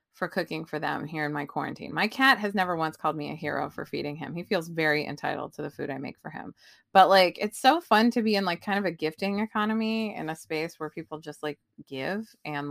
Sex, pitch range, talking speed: female, 155-215 Hz, 255 wpm